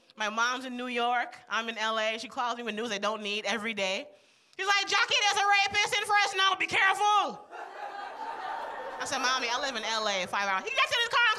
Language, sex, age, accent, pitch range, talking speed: English, female, 30-49, American, 230-365 Hz, 240 wpm